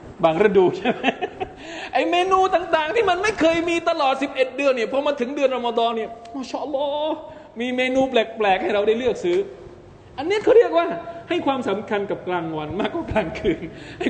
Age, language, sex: 20-39, Thai, male